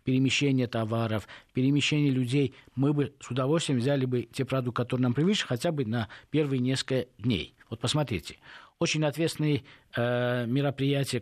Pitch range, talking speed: 110-140 Hz, 145 wpm